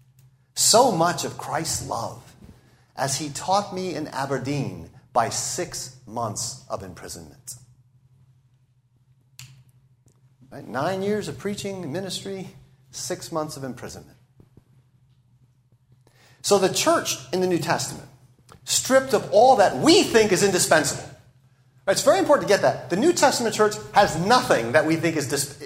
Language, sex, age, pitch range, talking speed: English, male, 40-59, 125-180 Hz, 135 wpm